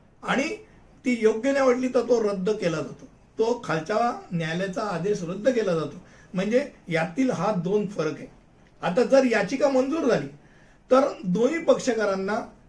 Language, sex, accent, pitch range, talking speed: Hindi, male, native, 180-230 Hz, 65 wpm